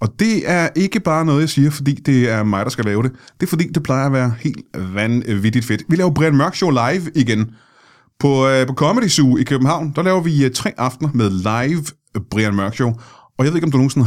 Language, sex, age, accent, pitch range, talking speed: Danish, male, 30-49, native, 115-140 Hz, 235 wpm